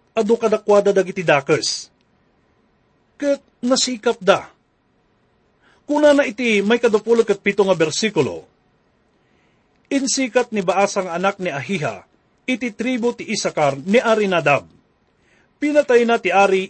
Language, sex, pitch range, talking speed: English, male, 190-245 Hz, 105 wpm